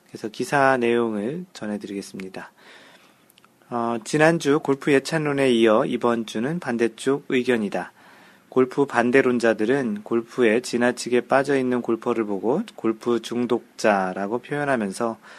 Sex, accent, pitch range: male, native, 110-140 Hz